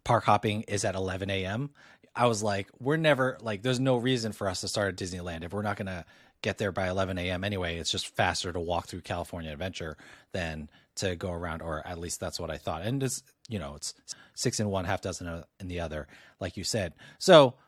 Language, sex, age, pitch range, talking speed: English, male, 30-49, 95-125 Hz, 225 wpm